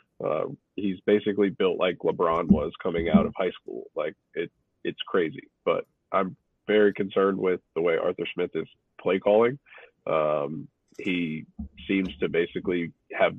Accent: American